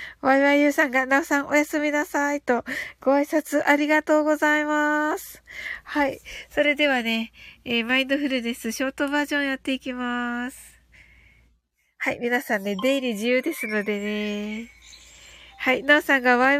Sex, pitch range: female, 245-300 Hz